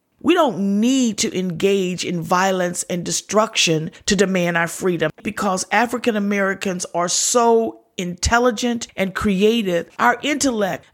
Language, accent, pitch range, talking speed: English, American, 195-245 Hz, 120 wpm